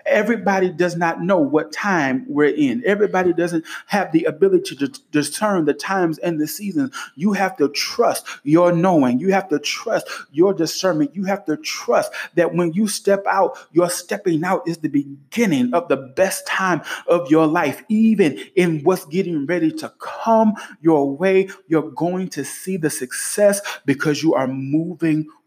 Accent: American